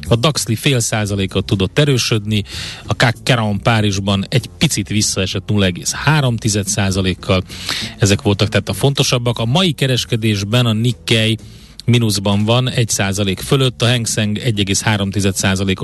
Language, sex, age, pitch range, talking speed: Hungarian, male, 30-49, 100-120 Hz, 115 wpm